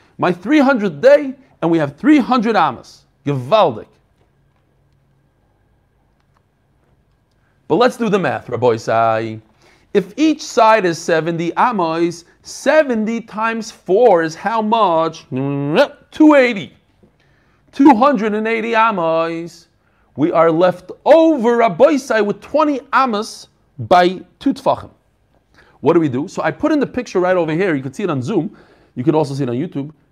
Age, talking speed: 40-59, 130 wpm